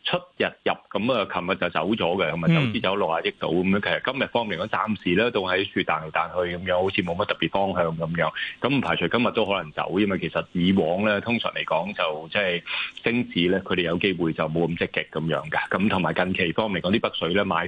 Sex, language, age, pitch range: male, Chinese, 20-39, 85-100 Hz